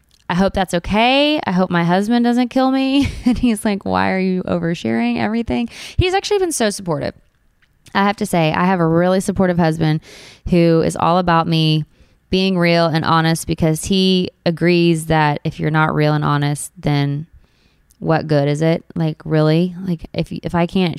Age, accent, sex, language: 20-39, American, female, English